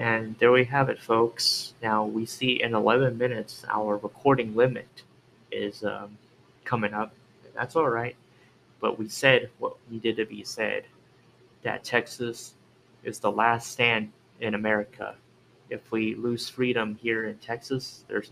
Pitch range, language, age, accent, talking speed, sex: 105-125 Hz, English, 20-39, American, 155 wpm, male